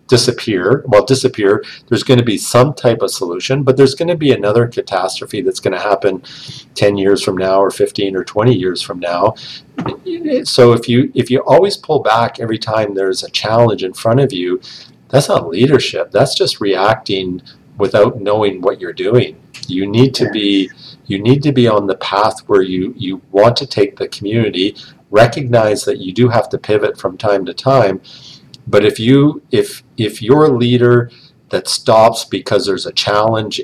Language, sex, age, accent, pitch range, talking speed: English, male, 50-69, American, 95-125 Hz, 185 wpm